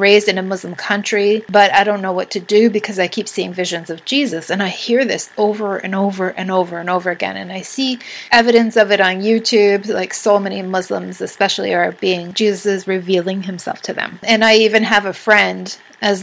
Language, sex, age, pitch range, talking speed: English, female, 30-49, 190-220 Hz, 215 wpm